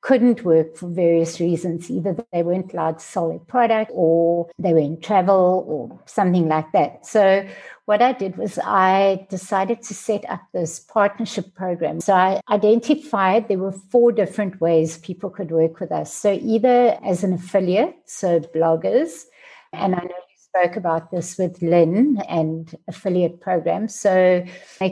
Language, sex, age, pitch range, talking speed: English, female, 60-79, 170-210 Hz, 160 wpm